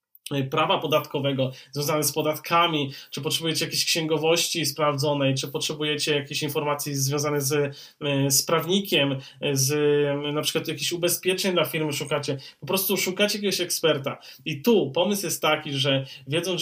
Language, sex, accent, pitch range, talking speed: Polish, male, native, 145-170 Hz, 135 wpm